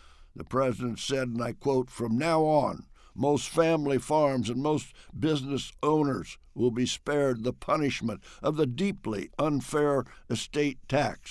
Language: English